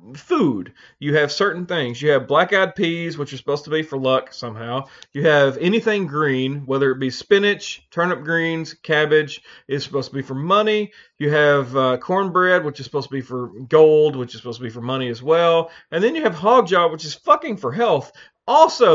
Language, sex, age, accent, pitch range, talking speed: English, male, 40-59, American, 140-220 Hz, 210 wpm